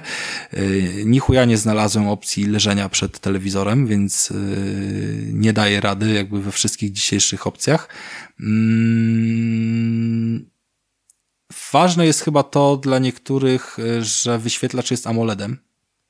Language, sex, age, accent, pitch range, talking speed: Polish, male, 20-39, native, 105-120 Hz, 95 wpm